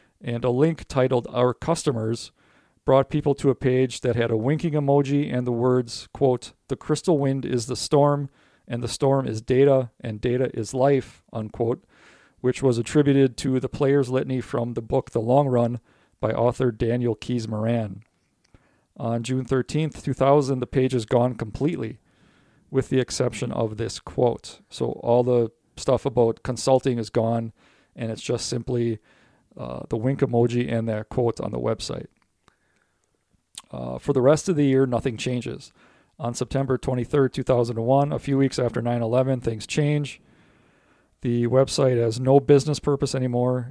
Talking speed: 160 wpm